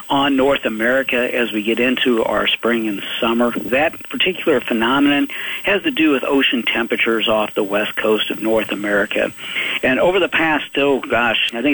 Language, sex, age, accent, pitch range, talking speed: English, male, 50-69, American, 115-140 Hz, 180 wpm